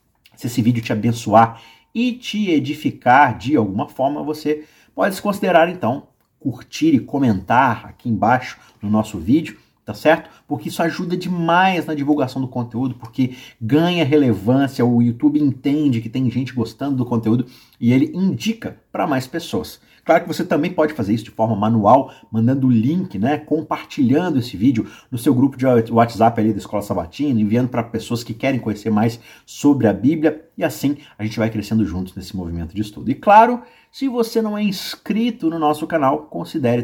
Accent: Brazilian